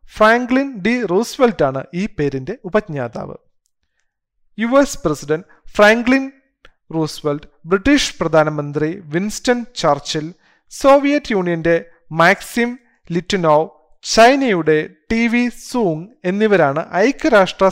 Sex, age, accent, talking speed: male, 40-59, native, 85 wpm